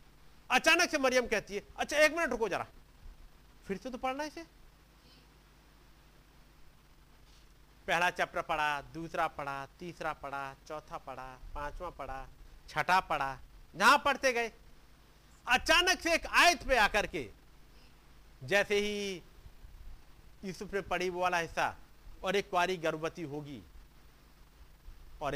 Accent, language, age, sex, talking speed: native, Hindi, 50-69, male, 115 wpm